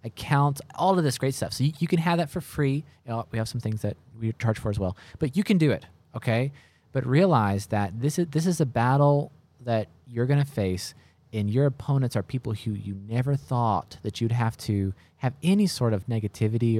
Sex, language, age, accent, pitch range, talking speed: male, English, 20-39, American, 105-140 Hz, 230 wpm